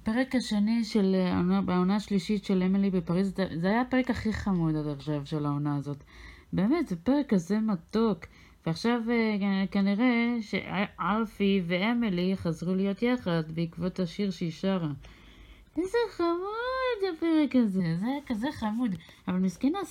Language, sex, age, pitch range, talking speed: Hebrew, female, 30-49, 180-240 Hz, 135 wpm